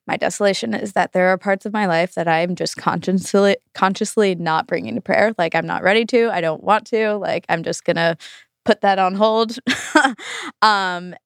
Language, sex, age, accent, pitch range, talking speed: English, female, 20-39, American, 180-220 Hz, 210 wpm